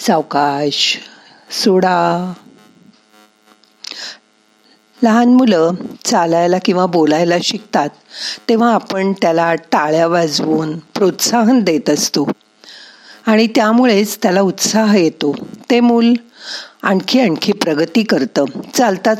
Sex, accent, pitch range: female, native, 160-225 Hz